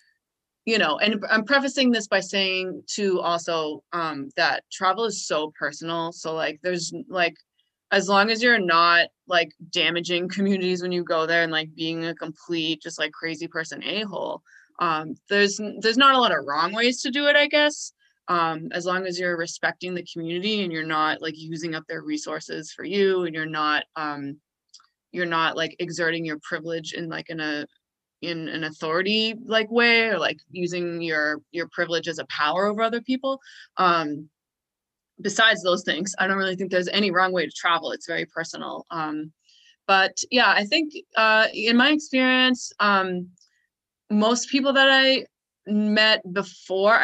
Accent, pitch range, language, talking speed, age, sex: American, 165-220 Hz, English, 175 wpm, 20-39, female